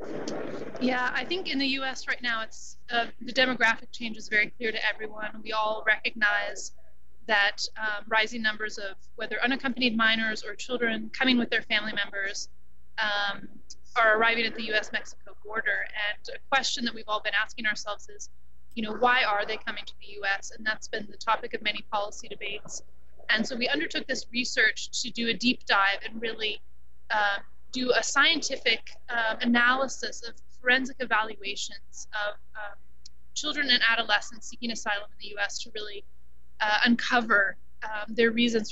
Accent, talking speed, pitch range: American, 170 wpm, 210-240 Hz